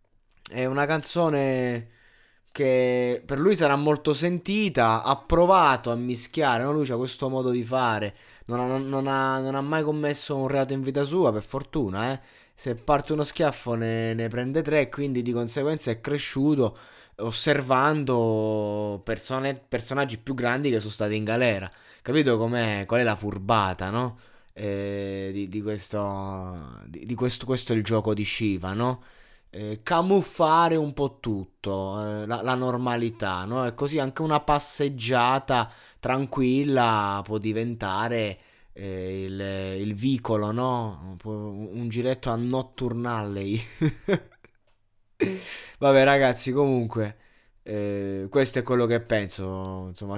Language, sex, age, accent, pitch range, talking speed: Italian, male, 20-39, native, 110-135 Hz, 130 wpm